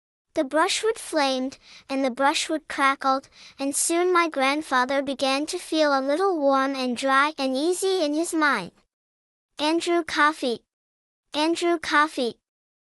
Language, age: English, 10-29